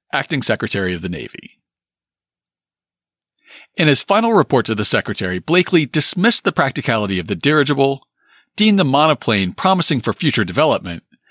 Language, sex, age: English, male, 40-59